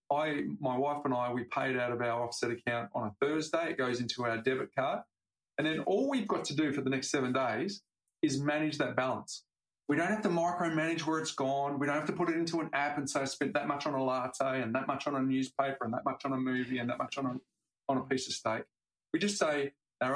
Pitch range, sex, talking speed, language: 125-155 Hz, male, 265 wpm, English